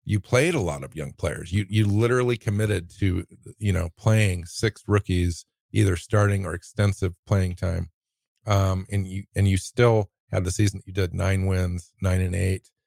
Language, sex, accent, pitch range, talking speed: English, male, American, 90-105 Hz, 185 wpm